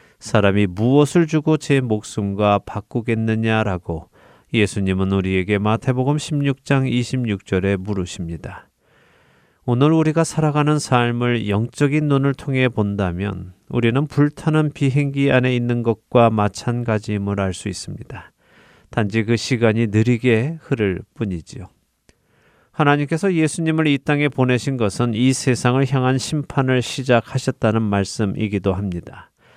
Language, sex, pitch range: Korean, male, 105-145 Hz